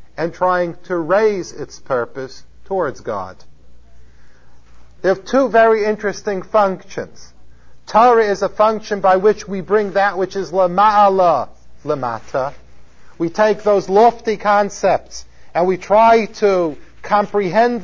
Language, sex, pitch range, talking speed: English, male, 140-210 Hz, 125 wpm